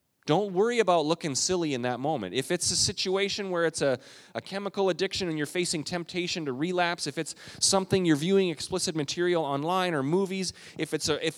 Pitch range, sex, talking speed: 145-185 Hz, male, 185 wpm